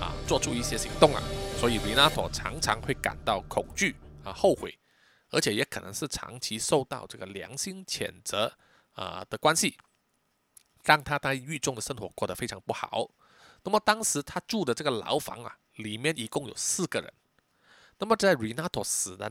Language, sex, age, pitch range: Chinese, male, 20-39, 125-195 Hz